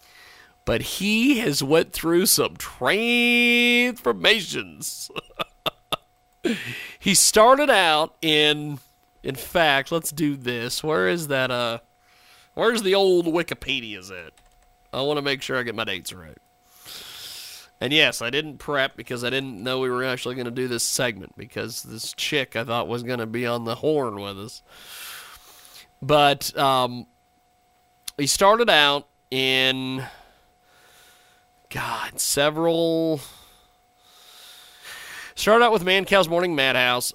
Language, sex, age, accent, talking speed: English, male, 40-59, American, 130 wpm